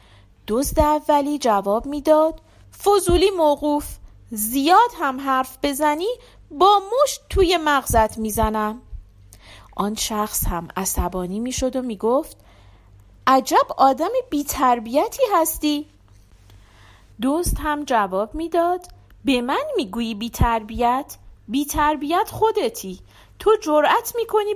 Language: Persian